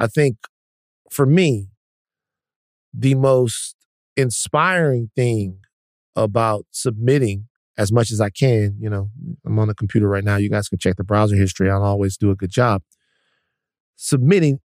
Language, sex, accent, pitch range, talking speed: English, male, American, 105-140 Hz, 150 wpm